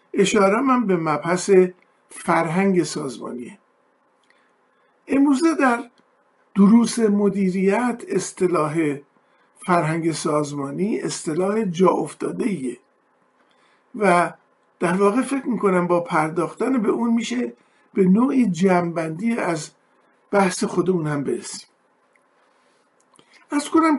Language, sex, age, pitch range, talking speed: Persian, male, 50-69, 175-230 Hz, 85 wpm